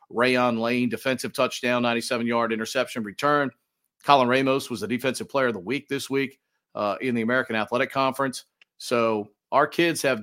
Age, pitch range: 50-69, 120-150 Hz